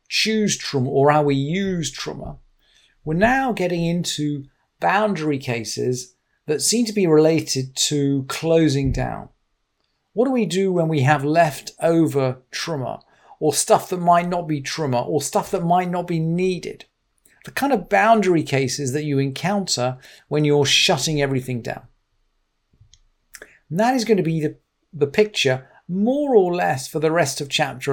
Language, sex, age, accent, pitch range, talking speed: English, male, 40-59, British, 135-175 Hz, 160 wpm